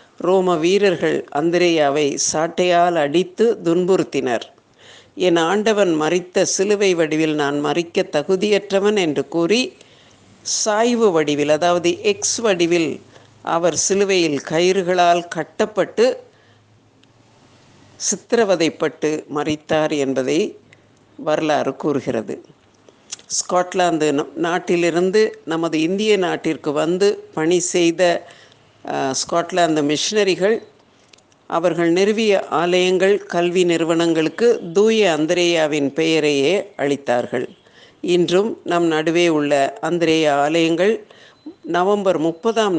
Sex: female